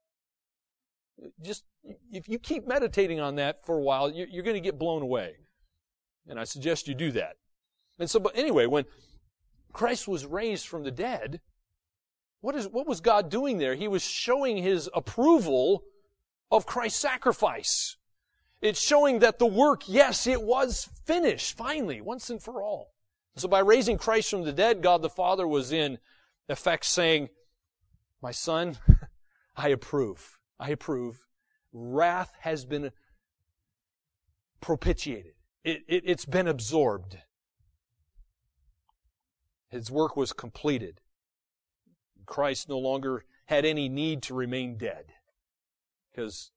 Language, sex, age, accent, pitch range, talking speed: English, male, 40-59, American, 120-200 Hz, 135 wpm